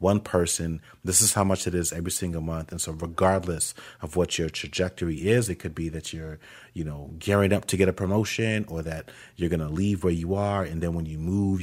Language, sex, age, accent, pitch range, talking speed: English, male, 30-49, American, 85-105 Hz, 235 wpm